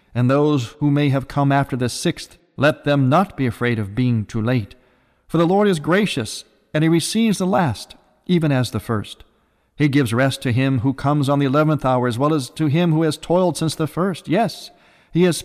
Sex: male